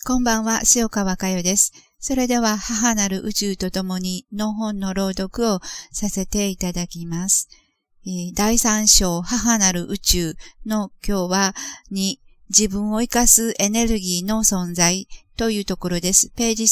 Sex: female